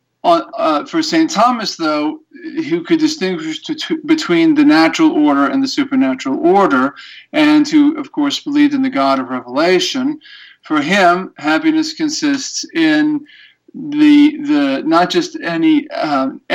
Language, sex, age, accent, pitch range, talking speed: English, male, 40-59, American, 200-315 Hz, 130 wpm